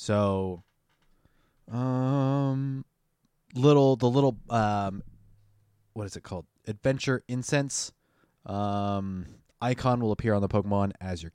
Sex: male